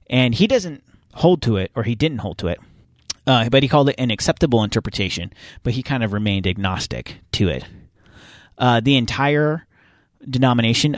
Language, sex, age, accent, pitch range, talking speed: English, male, 30-49, American, 110-150 Hz, 175 wpm